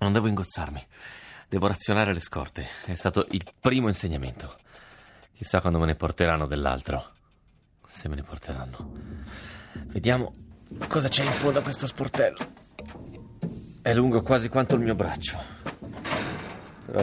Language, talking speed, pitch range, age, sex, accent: Italian, 135 wpm, 80-105 Hz, 30-49, male, native